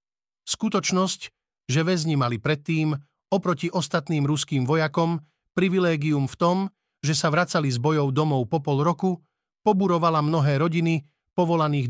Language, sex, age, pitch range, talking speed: Slovak, male, 50-69, 140-170 Hz, 125 wpm